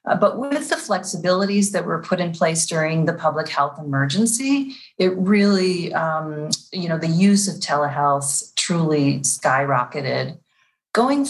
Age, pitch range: 40-59, 155-200 Hz